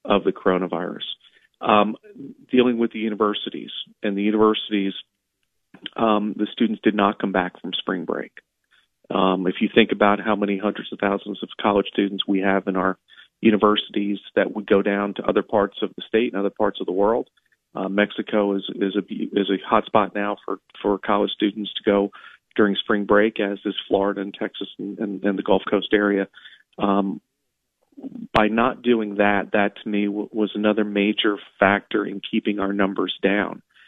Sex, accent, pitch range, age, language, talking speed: male, American, 100-110 Hz, 40-59, English, 180 wpm